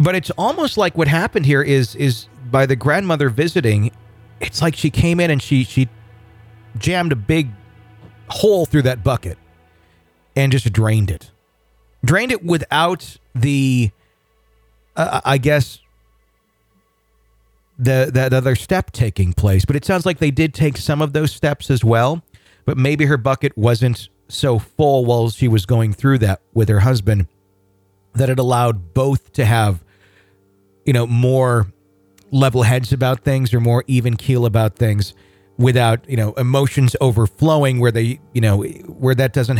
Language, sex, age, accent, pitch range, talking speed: English, male, 40-59, American, 105-135 Hz, 160 wpm